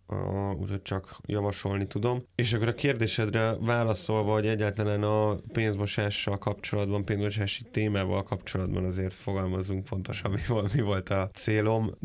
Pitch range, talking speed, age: 95-105 Hz, 125 wpm, 20-39